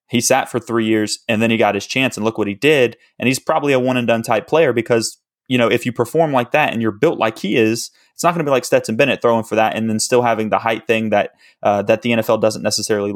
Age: 20-39